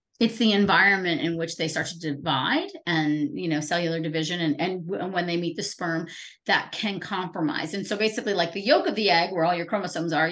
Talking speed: 235 wpm